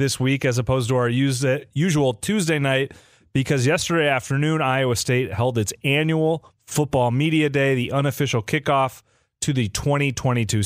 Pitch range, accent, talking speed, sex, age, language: 120-145 Hz, American, 145 wpm, male, 30-49, English